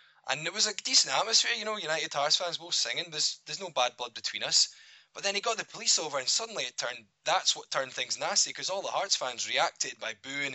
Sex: male